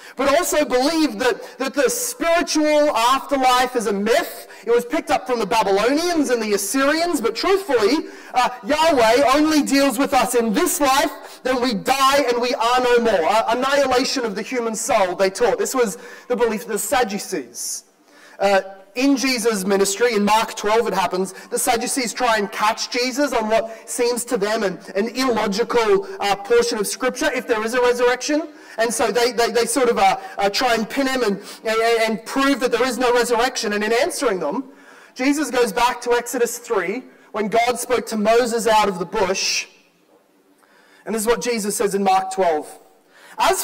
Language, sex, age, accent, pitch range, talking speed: English, male, 30-49, Australian, 220-270 Hz, 190 wpm